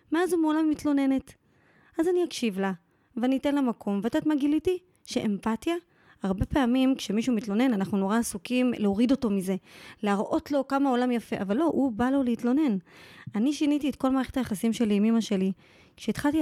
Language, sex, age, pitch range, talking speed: Hebrew, female, 20-39, 215-275 Hz, 180 wpm